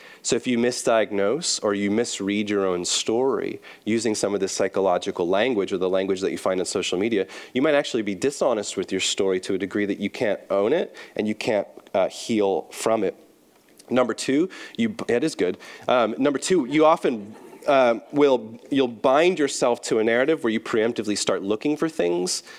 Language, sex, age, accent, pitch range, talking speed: English, male, 30-49, American, 95-115 Hz, 195 wpm